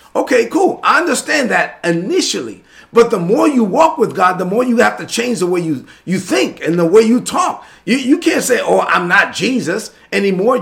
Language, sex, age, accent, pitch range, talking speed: English, male, 40-59, American, 185-280 Hz, 215 wpm